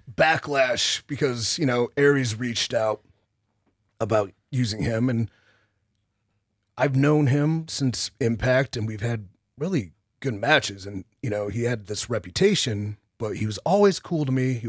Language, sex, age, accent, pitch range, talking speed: English, male, 30-49, American, 105-130 Hz, 150 wpm